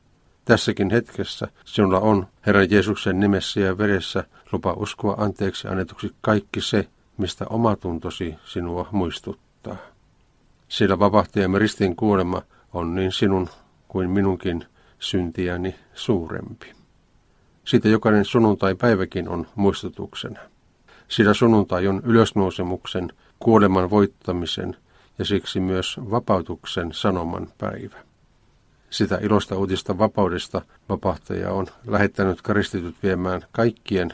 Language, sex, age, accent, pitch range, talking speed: Finnish, male, 50-69, native, 95-105 Hz, 100 wpm